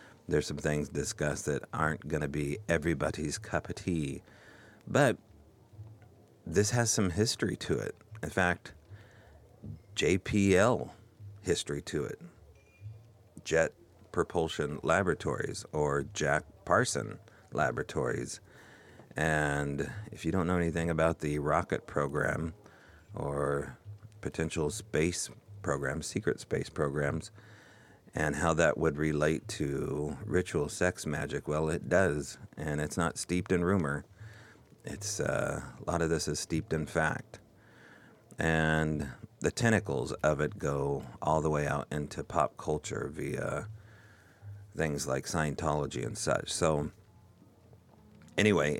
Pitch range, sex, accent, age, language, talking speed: 75-105 Hz, male, American, 40-59, English, 120 wpm